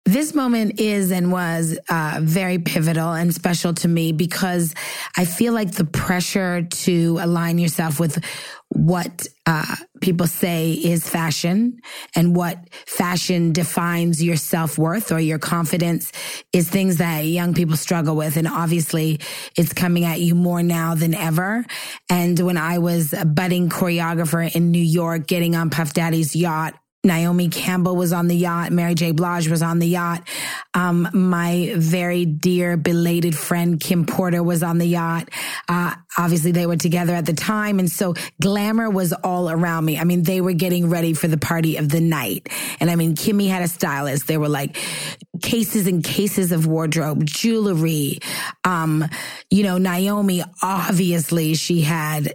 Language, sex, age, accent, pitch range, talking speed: English, female, 20-39, American, 165-180 Hz, 165 wpm